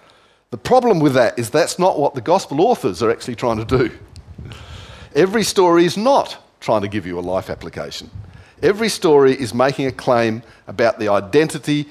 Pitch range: 105-155 Hz